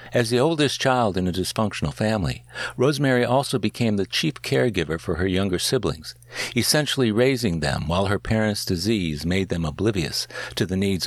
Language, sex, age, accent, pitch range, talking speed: English, male, 60-79, American, 90-120 Hz, 170 wpm